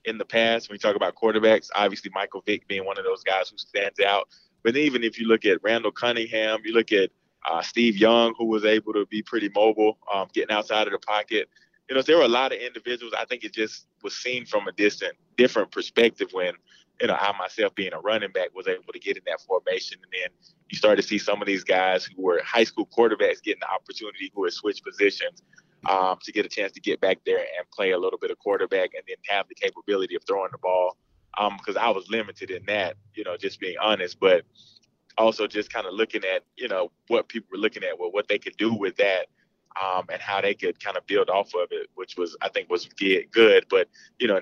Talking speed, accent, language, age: 245 wpm, American, English, 20-39